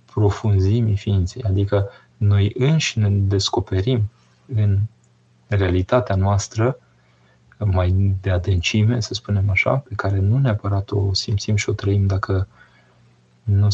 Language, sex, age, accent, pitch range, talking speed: Romanian, male, 20-39, native, 95-115 Hz, 120 wpm